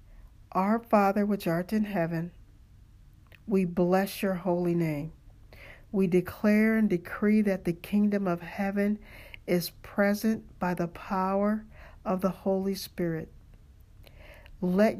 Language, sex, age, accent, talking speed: English, male, 50-69, American, 120 wpm